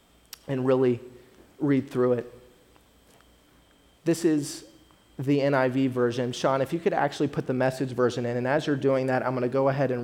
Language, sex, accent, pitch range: English, male, American, 125-145 Hz